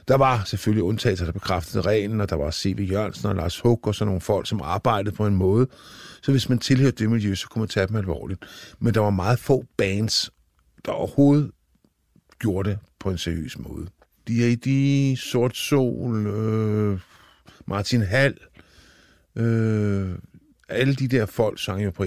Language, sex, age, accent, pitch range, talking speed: Danish, male, 50-69, native, 95-120 Hz, 175 wpm